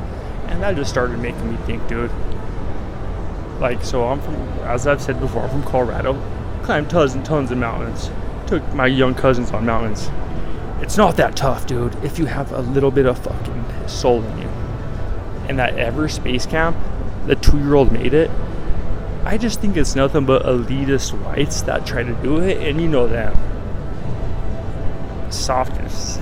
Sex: male